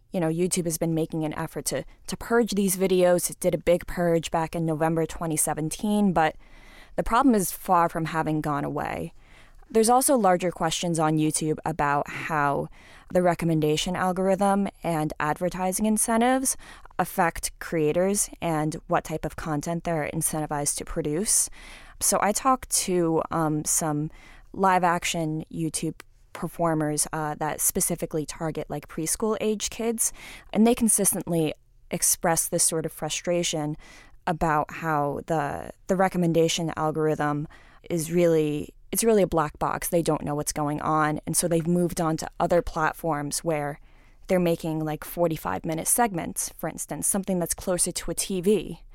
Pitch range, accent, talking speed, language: 155-185 Hz, American, 150 wpm, English